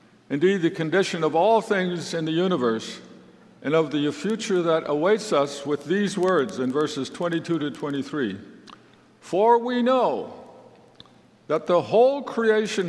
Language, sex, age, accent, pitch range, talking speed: English, male, 60-79, American, 145-210 Hz, 145 wpm